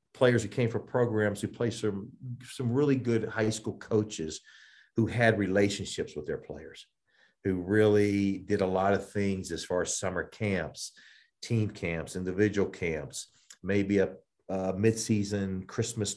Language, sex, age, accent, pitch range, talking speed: English, male, 50-69, American, 95-115 Hz, 150 wpm